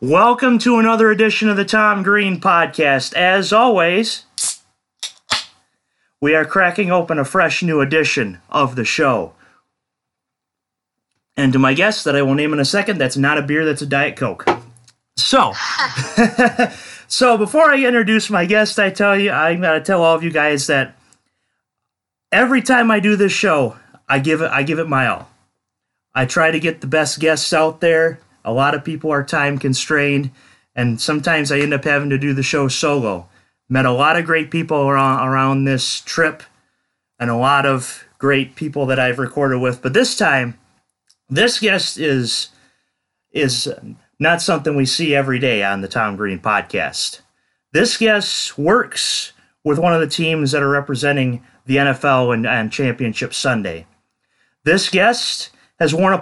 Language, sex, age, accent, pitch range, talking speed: English, male, 30-49, American, 135-195 Hz, 170 wpm